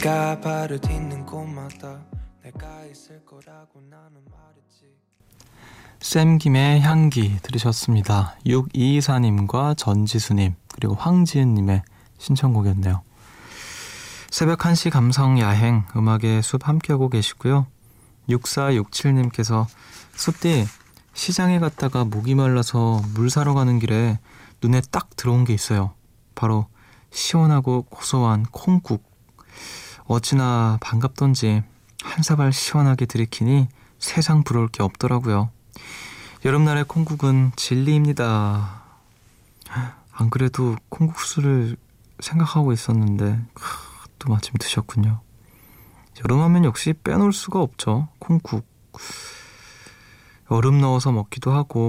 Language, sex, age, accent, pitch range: Korean, male, 20-39, native, 110-140 Hz